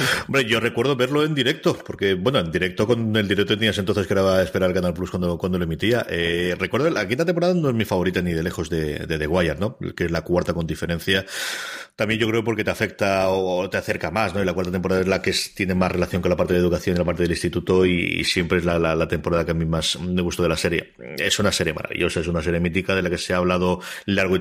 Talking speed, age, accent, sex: 280 wpm, 30-49, Spanish, male